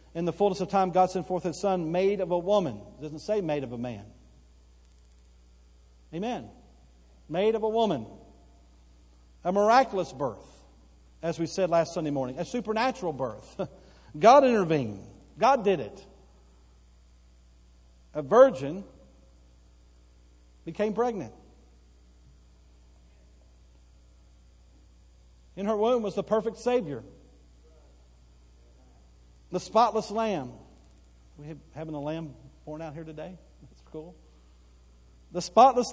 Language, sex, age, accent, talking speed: English, male, 50-69, American, 115 wpm